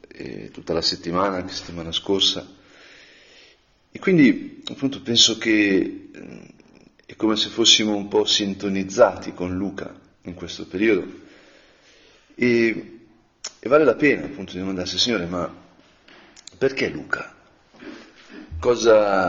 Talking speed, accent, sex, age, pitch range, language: 115 wpm, native, male, 40-59, 95-115 Hz, Italian